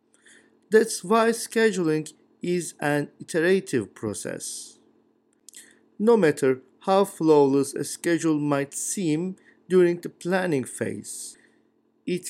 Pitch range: 145-195 Hz